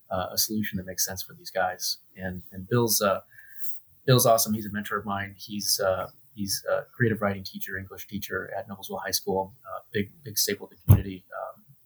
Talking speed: 205 wpm